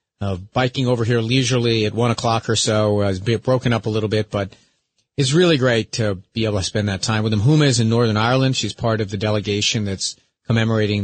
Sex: male